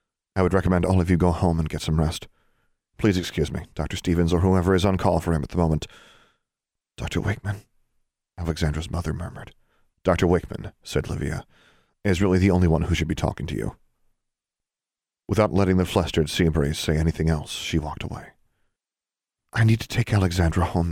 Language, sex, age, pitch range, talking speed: English, male, 40-59, 80-95 Hz, 185 wpm